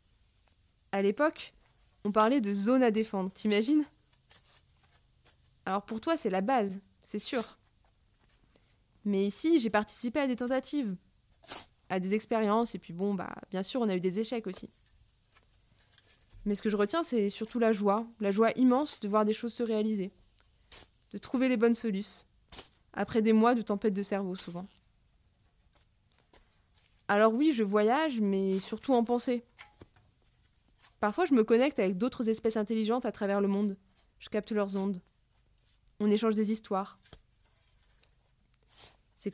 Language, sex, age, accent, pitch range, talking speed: French, female, 20-39, French, 185-245 Hz, 150 wpm